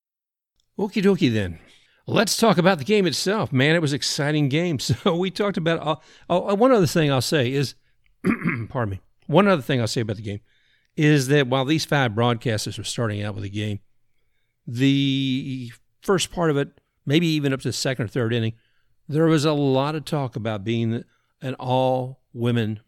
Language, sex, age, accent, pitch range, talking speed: English, male, 60-79, American, 110-150 Hz, 190 wpm